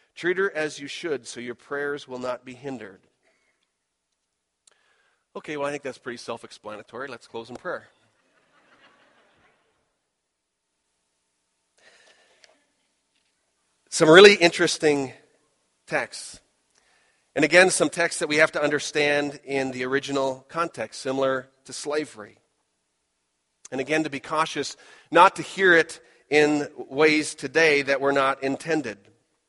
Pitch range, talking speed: 120-150 Hz, 120 wpm